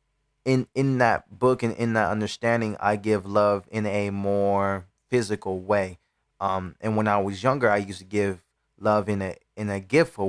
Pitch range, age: 100-115 Hz, 20-39